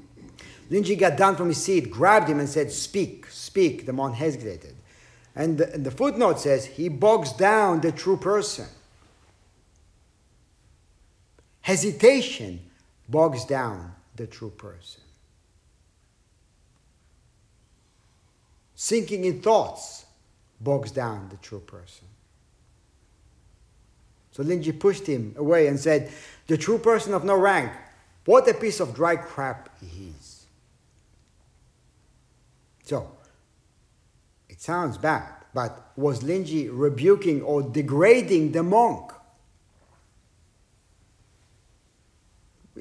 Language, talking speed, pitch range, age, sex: English, 105 wpm, 95-165 Hz, 50-69, male